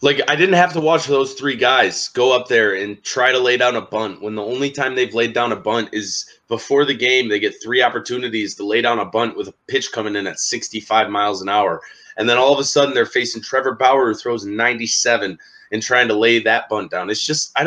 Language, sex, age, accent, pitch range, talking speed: English, male, 20-39, American, 105-165 Hz, 250 wpm